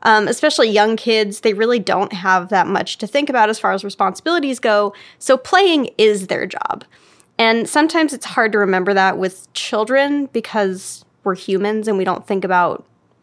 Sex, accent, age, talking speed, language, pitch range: female, American, 10-29, 180 wpm, English, 190-230 Hz